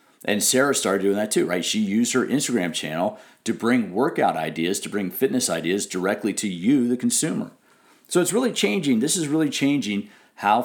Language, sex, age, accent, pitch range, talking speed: English, male, 40-59, American, 100-145 Hz, 190 wpm